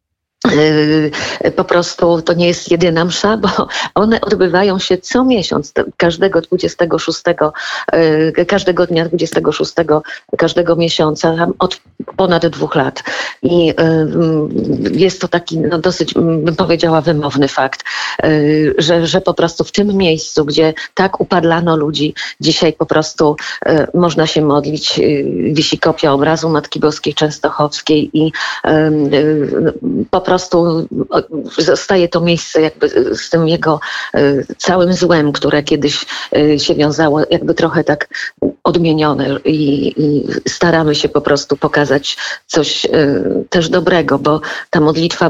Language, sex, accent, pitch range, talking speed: Polish, female, native, 150-175 Hz, 120 wpm